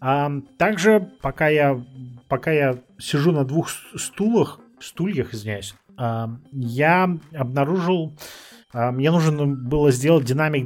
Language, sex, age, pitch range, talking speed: Russian, male, 30-49, 130-170 Hz, 100 wpm